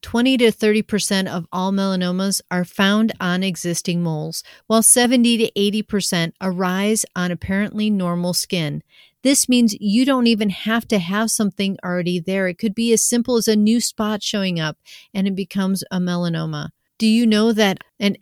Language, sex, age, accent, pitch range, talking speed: English, female, 40-59, American, 185-220 Hz, 170 wpm